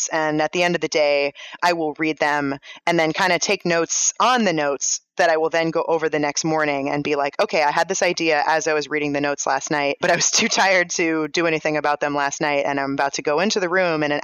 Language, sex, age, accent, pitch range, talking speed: English, female, 20-39, American, 145-170 Hz, 285 wpm